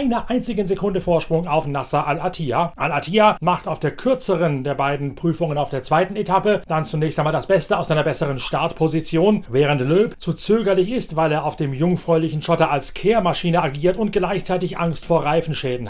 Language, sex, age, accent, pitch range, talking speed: German, male, 40-59, German, 155-190 Hz, 175 wpm